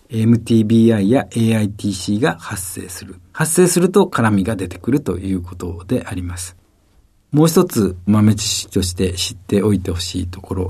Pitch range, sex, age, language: 95-130 Hz, male, 50-69, Japanese